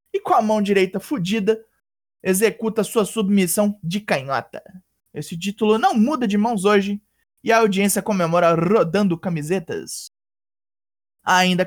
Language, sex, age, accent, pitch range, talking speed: Portuguese, male, 20-39, Brazilian, 175-230 Hz, 130 wpm